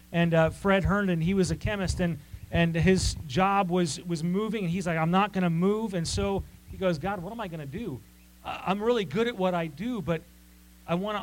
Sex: male